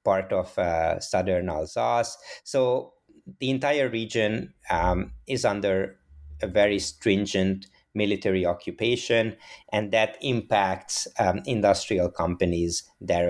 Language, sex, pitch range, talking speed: English, male, 90-110 Hz, 110 wpm